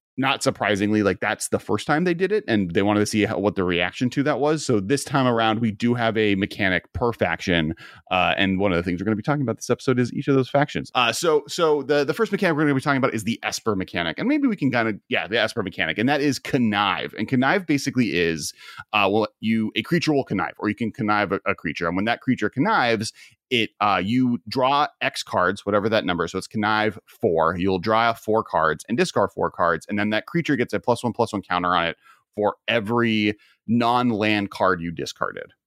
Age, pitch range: 30-49, 100-135 Hz